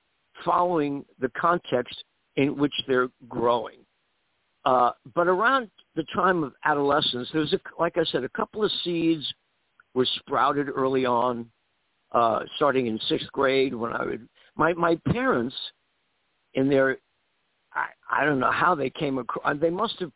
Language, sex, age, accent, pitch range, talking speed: English, male, 60-79, American, 125-165 Hz, 150 wpm